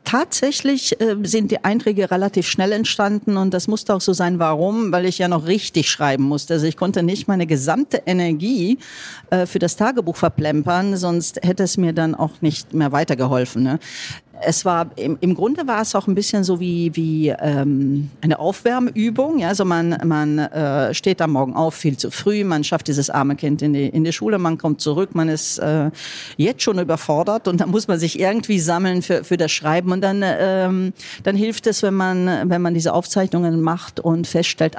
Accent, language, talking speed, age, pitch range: German, German, 190 wpm, 50-69, 160-195 Hz